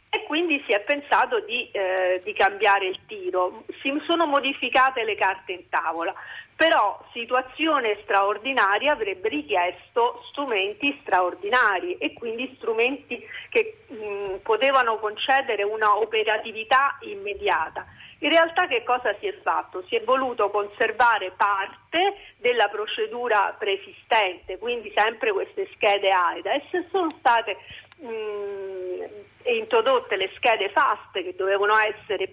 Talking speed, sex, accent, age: 125 wpm, female, native, 40-59